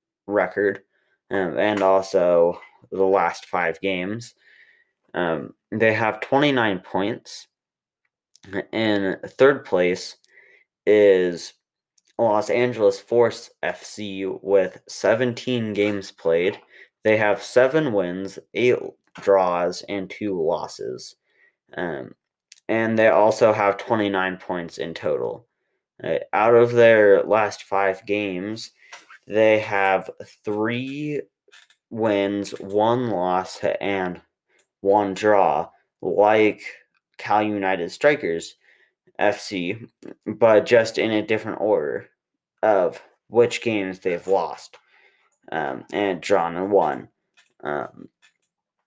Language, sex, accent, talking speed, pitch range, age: English, male, American, 100 wpm, 95-120 Hz, 20-39